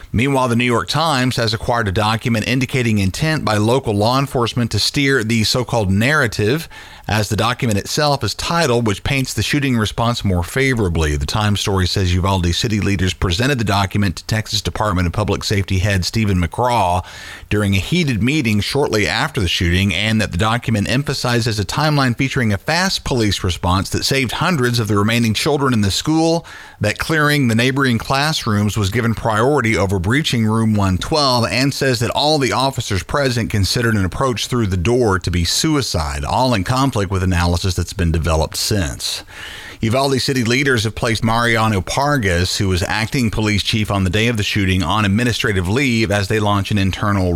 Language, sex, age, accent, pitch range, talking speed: English, male, 40-59, American, 95-125 Hz, 185 wpm